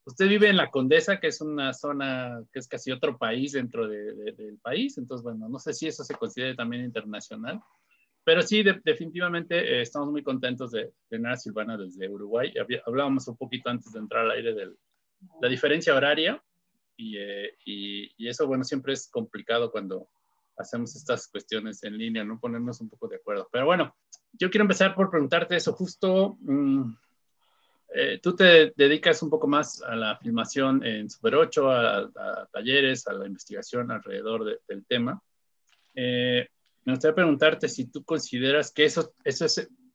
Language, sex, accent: Spanish, male, Mexican